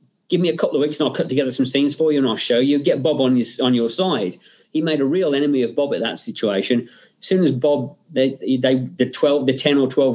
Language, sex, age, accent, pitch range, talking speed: English, male, 40-59, British, 125-155 Hz, 280 wpm